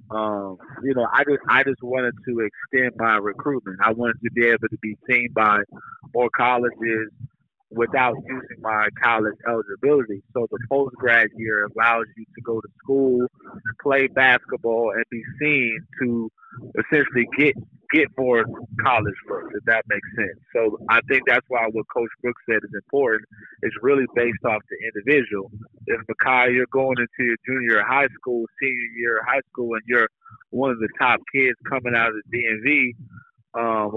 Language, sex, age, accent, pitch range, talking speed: English, male, 30-49, American, 115-130 Hz, 170 wpm